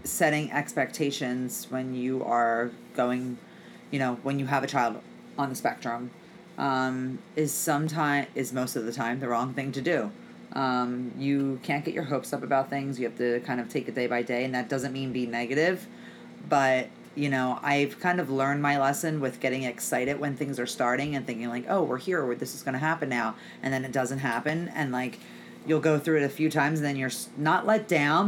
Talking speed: 220 wpm